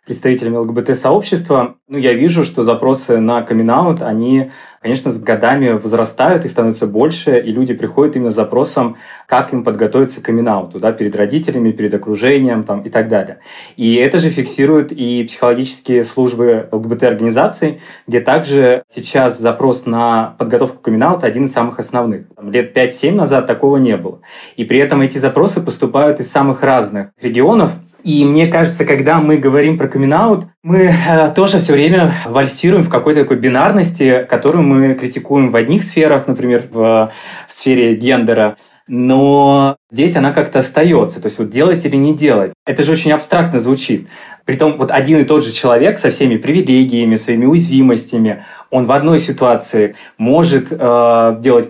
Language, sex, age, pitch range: Russian, male, 20-39, 120-150 Hz